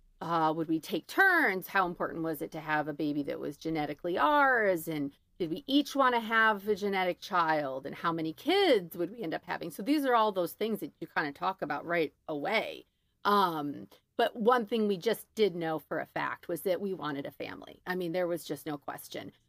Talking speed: 230 wpm